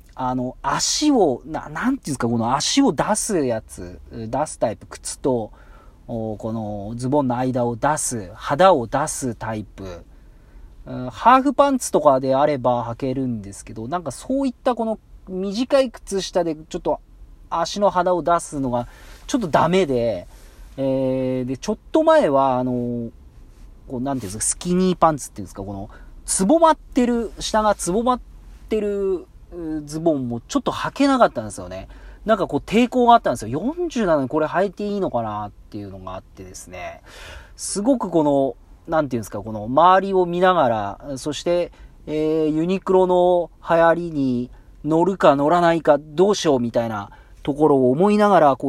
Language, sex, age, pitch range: Japanese, male, 40-59, 115-190 Hz